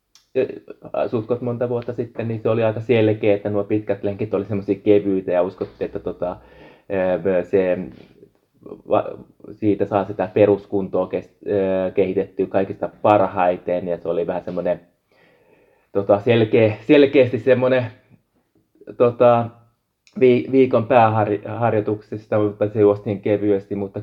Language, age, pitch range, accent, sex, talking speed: Finnish, 20-39, 95-120 Hz, native, male, 115 wpm